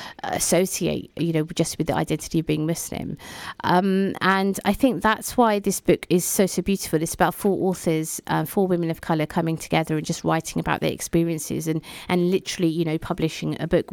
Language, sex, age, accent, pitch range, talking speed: English, female, 30-49, British, 155-185 Hz, 200 wpm